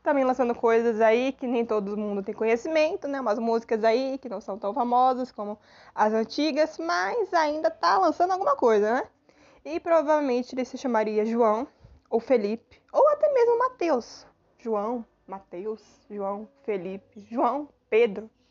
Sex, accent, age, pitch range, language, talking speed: female, Brazilian, 20-39, 220-285 Hz, Portuguese, 150 wpm